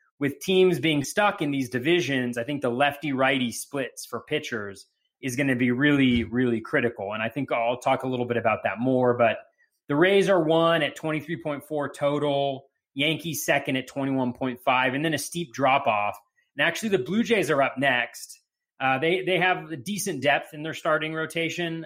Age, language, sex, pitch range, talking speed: 30-49, English, male, 125-160 Hz, 185 wpm